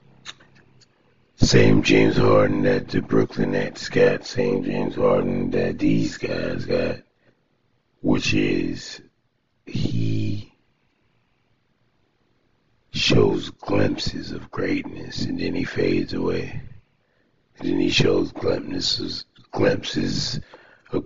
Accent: American